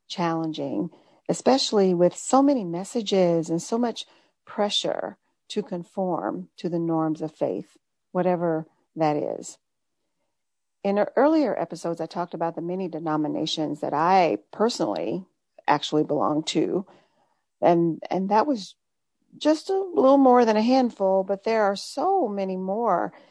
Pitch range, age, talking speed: 165-210 Hz, 40-59, 135 wpm